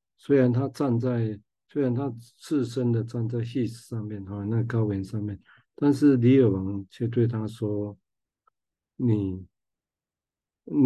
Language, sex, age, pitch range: Chinese, male, 50-69, 110-125 Hz